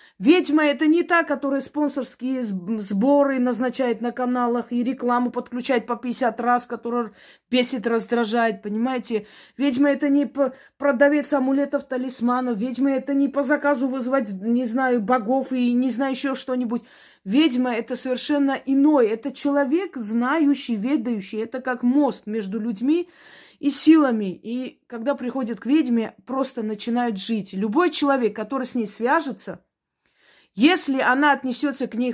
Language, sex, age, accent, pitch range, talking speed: Russian, female, 20-39, native, 235-280 Hz, 140 wpm